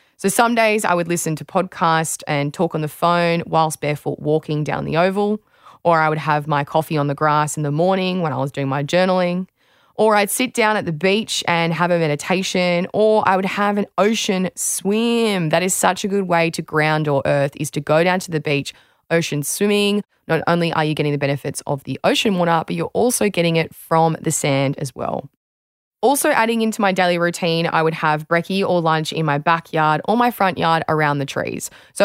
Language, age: English, 20-39